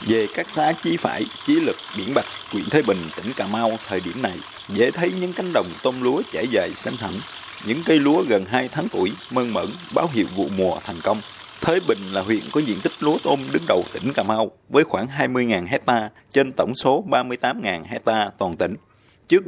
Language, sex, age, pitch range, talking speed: Vietnamese, male, 20-39, 105-135 Hz, 215 wpm